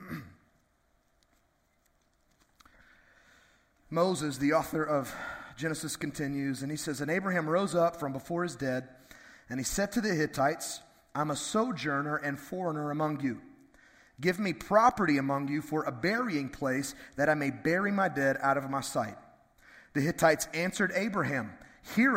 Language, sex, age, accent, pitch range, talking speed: English, male, 30-49, American, 145-195 Hz, 145 wpm